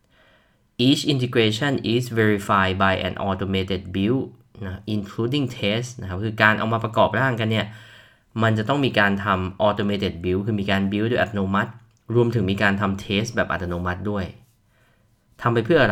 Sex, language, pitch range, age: male, Thai, 100-120 Hz, 20-39